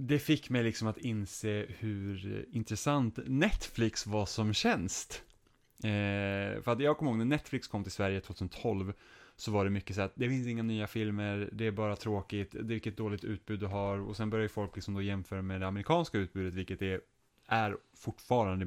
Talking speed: 195 wpm